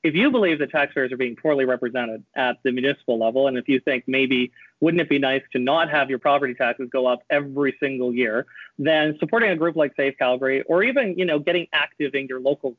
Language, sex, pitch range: English, male, 130-165 Hz